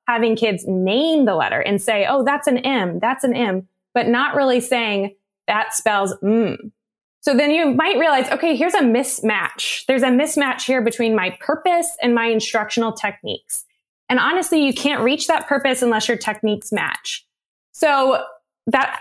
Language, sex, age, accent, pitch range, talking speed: English, female, 20-39, American, 215-275 Hz, 170 wpm